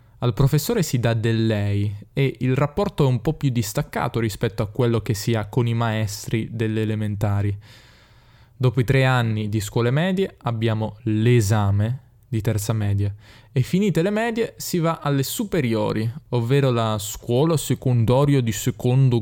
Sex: male